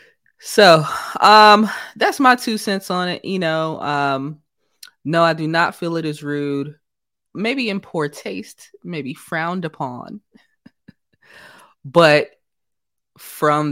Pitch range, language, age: 135-175 Hz, English, 20-39